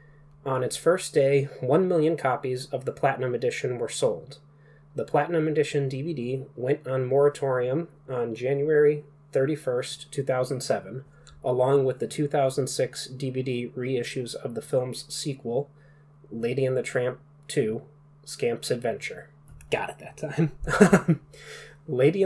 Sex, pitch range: male, 130-145 Hz